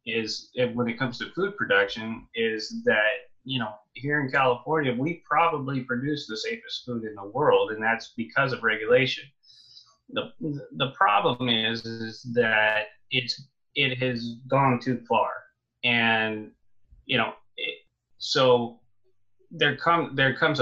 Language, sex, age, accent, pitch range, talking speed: English, male, 30-49, American, 115-145 Hz, 145 wpm